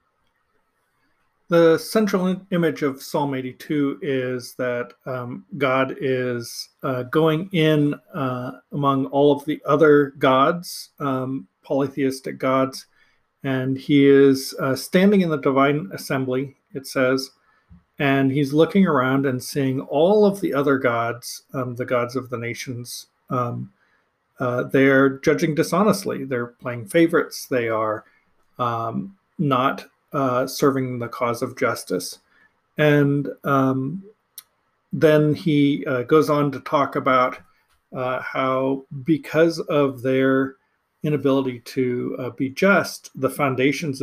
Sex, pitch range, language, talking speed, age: male, 130-150 Hz, English, 125 wpm, 50-69